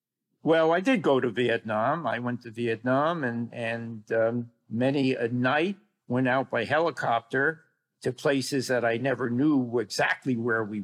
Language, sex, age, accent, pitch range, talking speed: English, male, 50-69, American, 115-145 Hz, 160 wpm